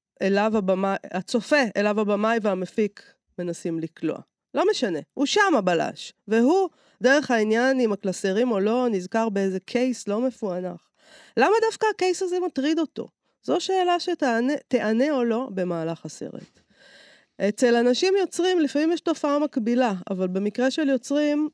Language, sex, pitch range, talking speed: Hebrew, female, 185-265 Hz, 135 wpm